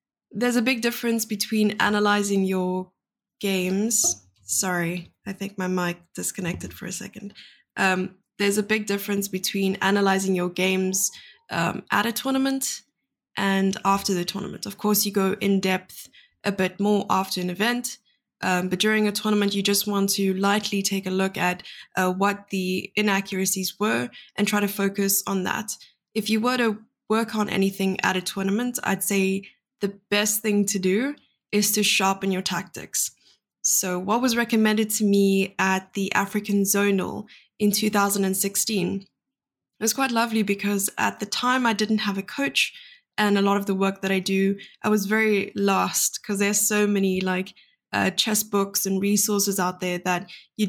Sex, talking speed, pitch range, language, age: female, 170 wpm, 190-215 Hz, English, 10-29